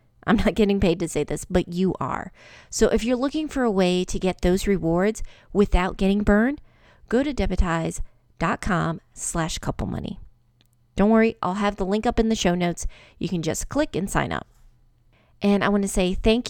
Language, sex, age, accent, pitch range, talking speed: English, female, 30-49, American, 175-220 Hz, 195 wpm